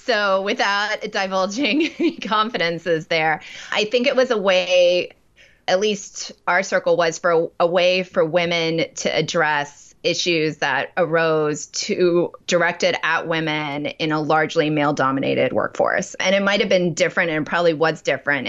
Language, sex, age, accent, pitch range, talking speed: English, female, 20-39, American, 160-195 Hz, 145 wpm